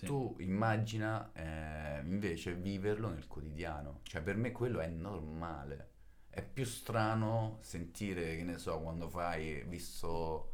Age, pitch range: 30-49, 85-115 Hz